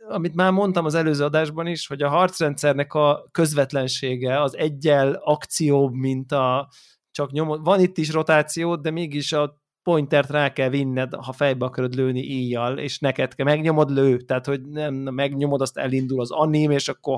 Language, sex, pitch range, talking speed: Hungarian, male, 130-160 Hz, 175 wpm